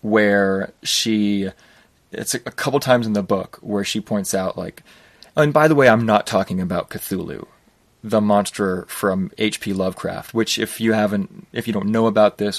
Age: 30-49